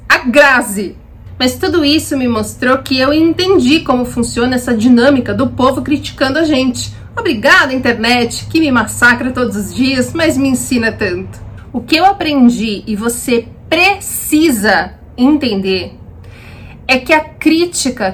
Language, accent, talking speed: Portuguese, Brazilian, 135 wpm